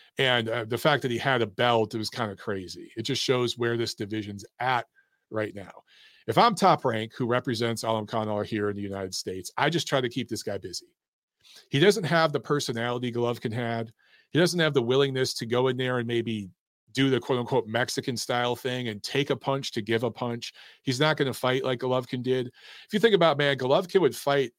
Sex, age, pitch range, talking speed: male, 40-59, 115-145 Hz, 225 wpm